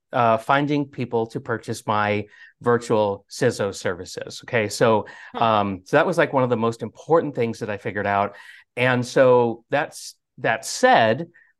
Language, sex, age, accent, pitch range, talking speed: English, male, 40-59, American, 115-160 Hz, 160 wpm